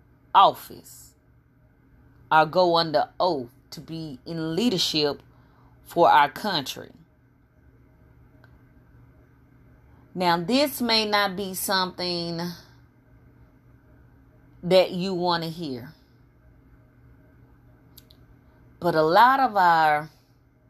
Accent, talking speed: American, 80 wpm